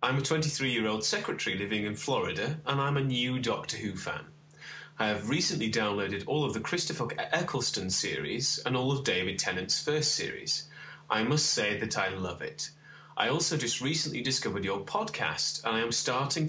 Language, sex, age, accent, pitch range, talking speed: English, male, 30-49, British, 110-150 Hz, 180 wpm